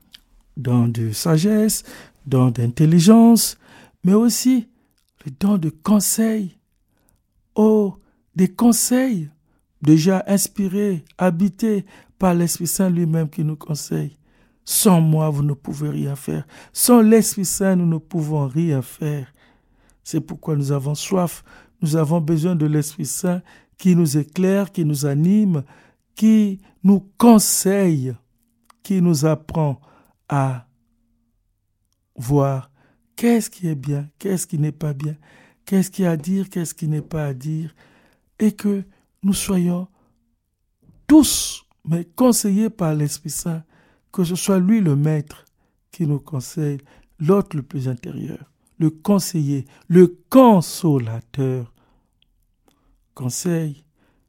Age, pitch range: 60-79, 145-195 Hz